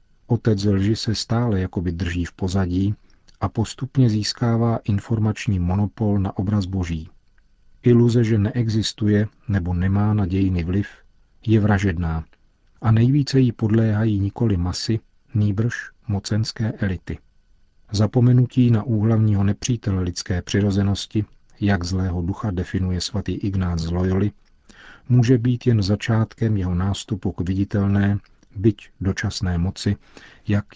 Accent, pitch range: native, 95-110 Hz